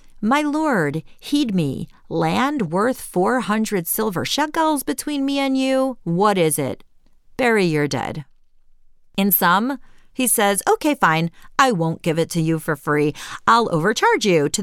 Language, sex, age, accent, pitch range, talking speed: English, female, 40-59, American, 160-245 Hz, 150 wpm